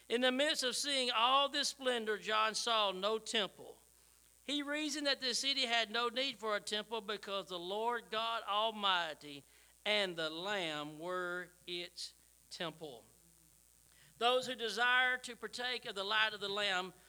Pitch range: 175-240 Hz